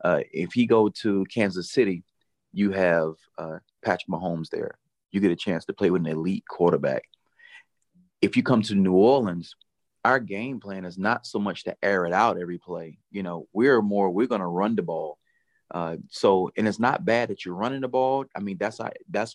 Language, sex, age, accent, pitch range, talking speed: English, male, 30-49, American, 100-130 Hz, 210 wpm